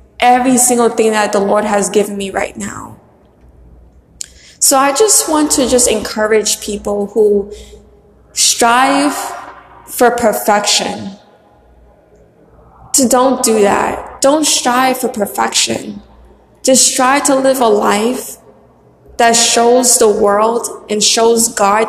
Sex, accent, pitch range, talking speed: female, American, 215-250 Hz, 125 wpm